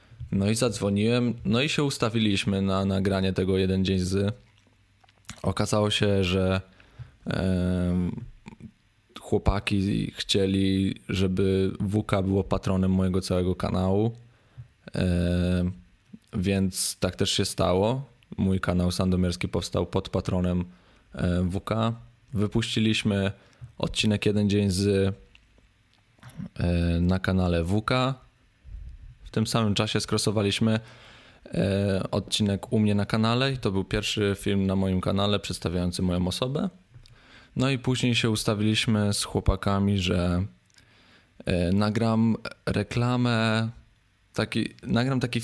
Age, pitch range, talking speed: 20-39, 95-115 Hz, 110 wpm